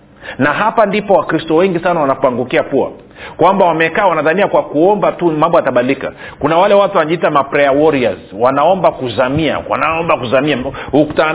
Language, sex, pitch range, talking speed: Swahili, male, 140-180 Hz, 145 wpm